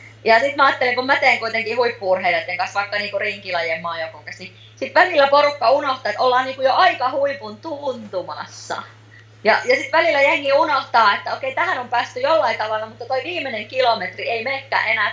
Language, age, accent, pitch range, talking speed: Finnish, 30-49, native, 180-265 Hz, 185 wpm